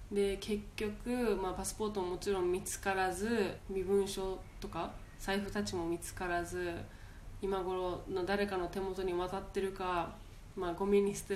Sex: female